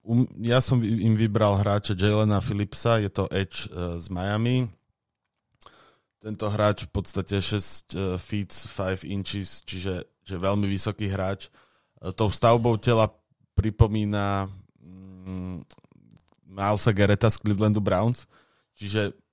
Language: Slovak